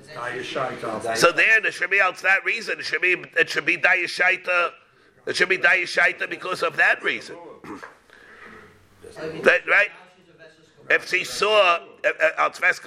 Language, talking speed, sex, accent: English, 125 wpm, male, American